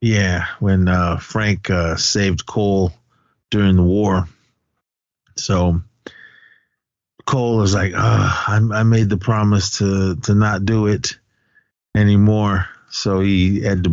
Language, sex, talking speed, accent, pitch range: English, male, 130 wpm, American, 95-125 Hz